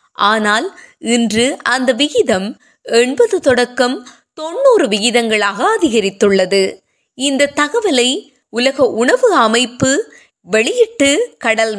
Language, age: Tamil, 20-39